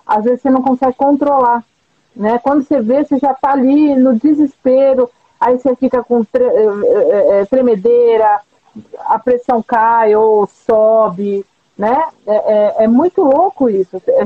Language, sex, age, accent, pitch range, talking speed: Portuguese, female, 40-59, Brazilian, 195-260 Hz, 140 wpm